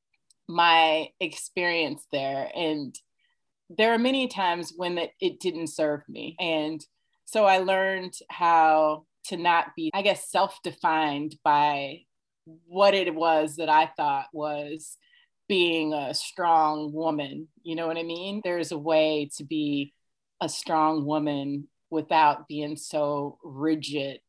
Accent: American